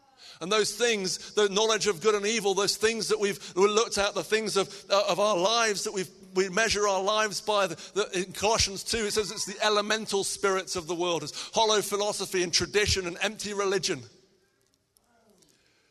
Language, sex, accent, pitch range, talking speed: English, male, British, 185-210 Hz, 190 wpm